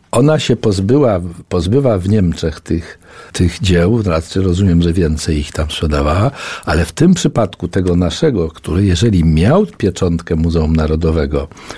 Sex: male